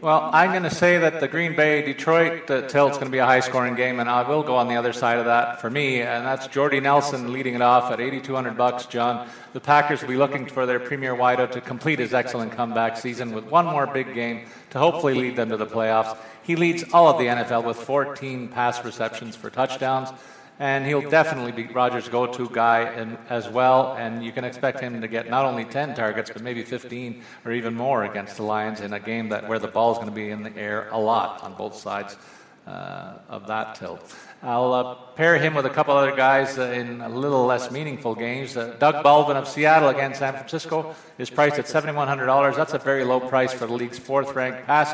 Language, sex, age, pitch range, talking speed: English, male, 40-59, 120-140 Hz, 230 wpm